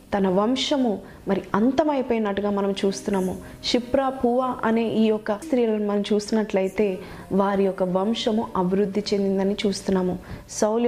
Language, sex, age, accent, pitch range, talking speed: Telugu, female, 20-39, native, 200-250 Hz, 115 wpm